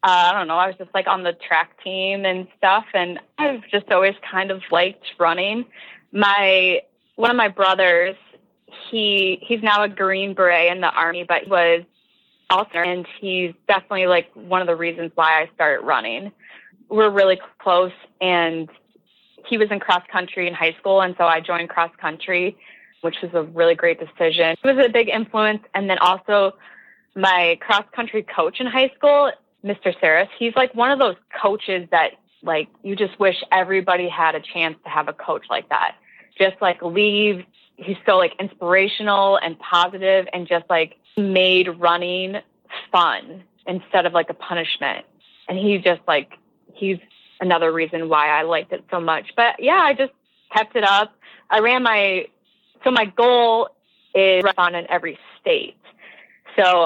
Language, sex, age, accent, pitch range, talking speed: English, female, 20-39, American, 175-210 Hz, 175 wpm